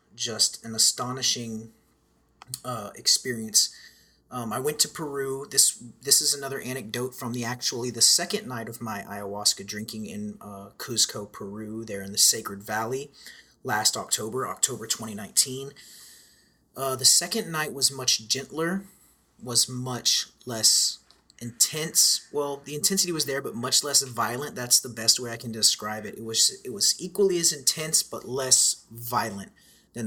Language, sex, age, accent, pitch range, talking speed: English, male, 30-49, American, 110-135 Hz, 155 wpm